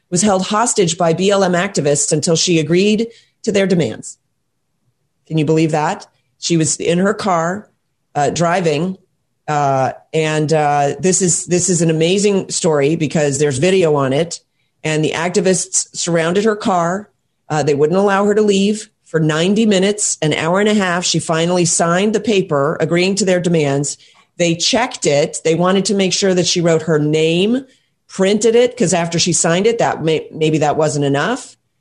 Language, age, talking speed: English, 40-59, 175 wpm